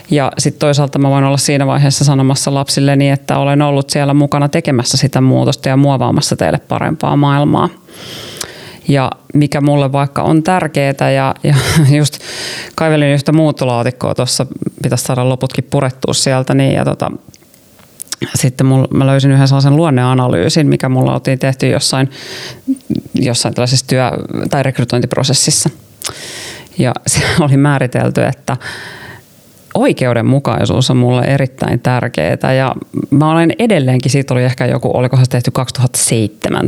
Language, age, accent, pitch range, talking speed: Finnish, 30-49, native, 130-145 Hz, 135 wpm